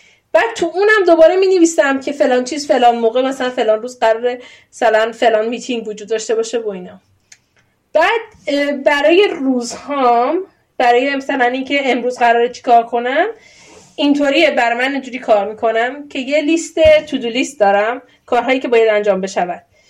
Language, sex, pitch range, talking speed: Persian, female, 235-320 Hz, 165 wpm